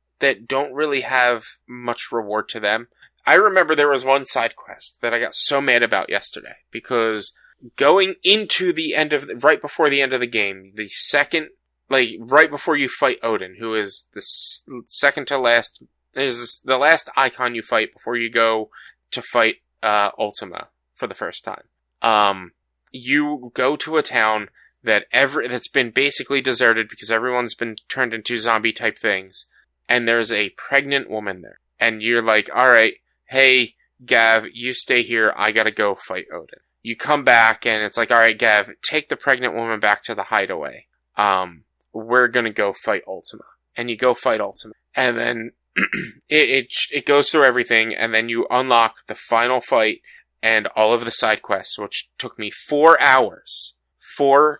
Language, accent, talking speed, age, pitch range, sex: English, American, 180 wpm, 20-39, 110-135 Hz, male